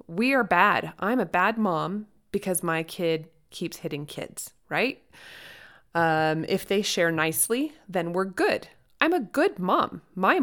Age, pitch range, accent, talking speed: 20-39, 170-235 Hz, American, 155 wpm